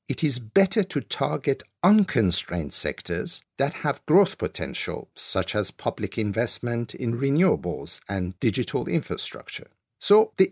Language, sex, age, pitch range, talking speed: English, male, 50-69, 100-150 Hz, 125 wpm